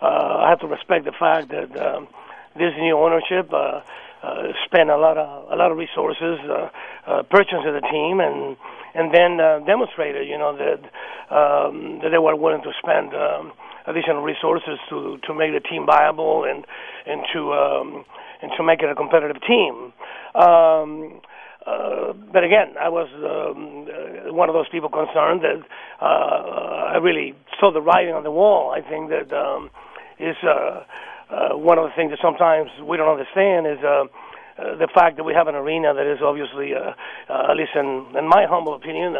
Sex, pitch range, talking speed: male, 155-175 Hz, 190 wpm